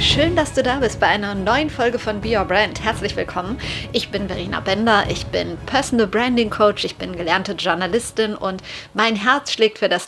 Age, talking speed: 30-49, 200 wpm